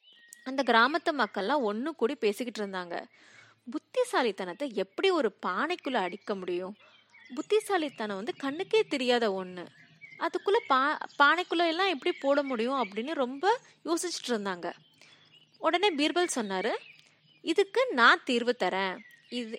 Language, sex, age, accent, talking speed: Tamil, female, 20-39, native, 110 wpm